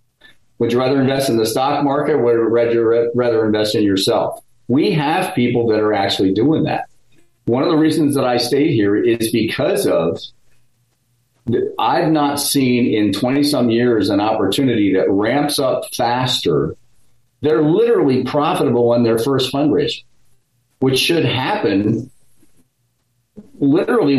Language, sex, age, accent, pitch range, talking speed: English, male, 40-59, American, 115-140 Hz, 145 wpm